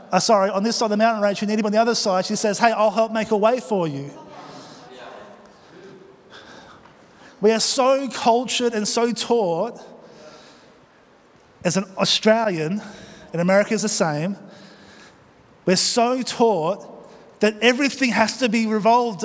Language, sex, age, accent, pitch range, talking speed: English, male, 20-39, Australian, 200-240 Hz, 155 wpm